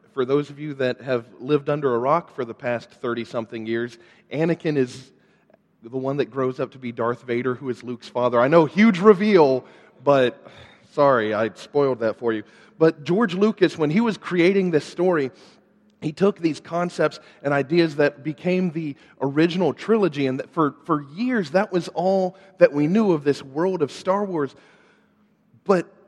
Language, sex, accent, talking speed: English, male, American, 180 wpm